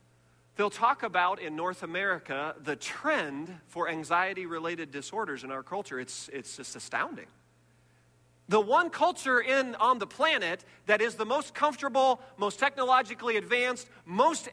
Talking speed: 135 wpm